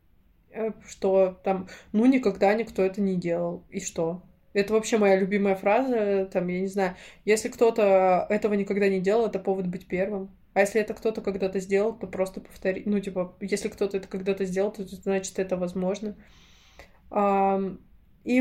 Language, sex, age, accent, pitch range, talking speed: Russian, female, 20-39, native, 195-230 Hz, 165 wpm